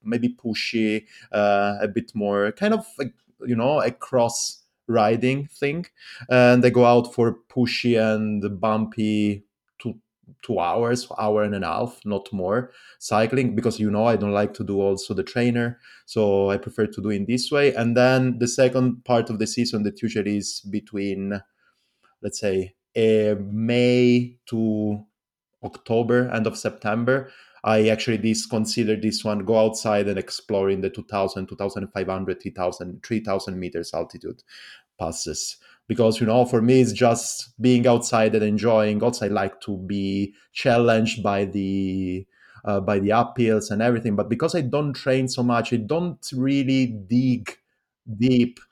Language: English